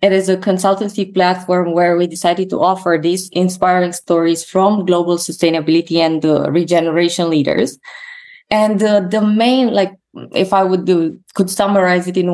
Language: English